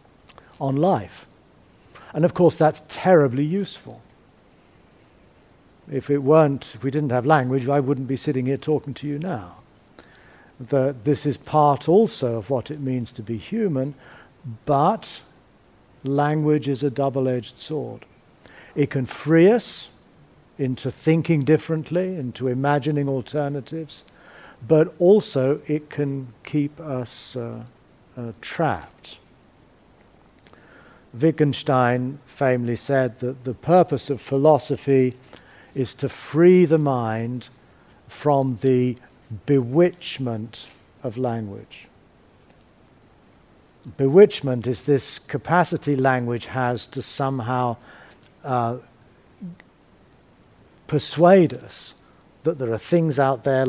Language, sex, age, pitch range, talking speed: English, male, 50-69, 125-150 Hz, 110 wpm